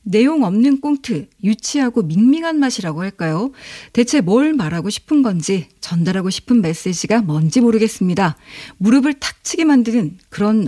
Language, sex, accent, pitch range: Korean, female, native, 180-265 Hz